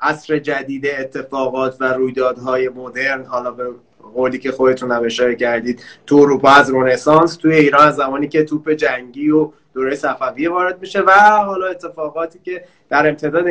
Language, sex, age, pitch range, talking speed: Persian, male, 30-49, 135-180 Hz, 150 wpm